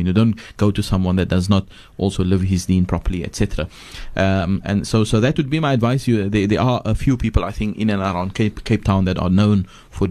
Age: 30-49